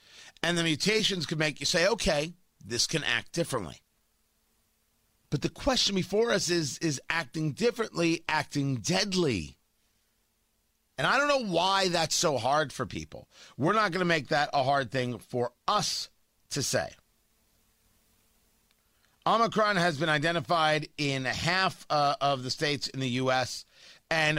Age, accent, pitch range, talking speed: 50-69, American, 125-175 Hz, 150 wpm